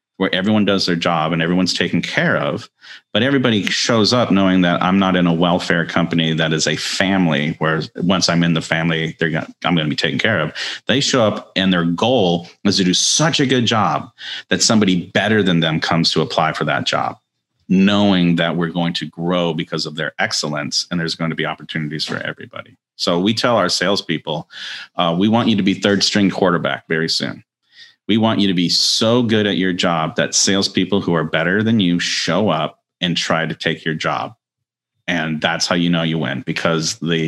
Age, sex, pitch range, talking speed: 40-59, male, 80-95 Hz, 215 wpm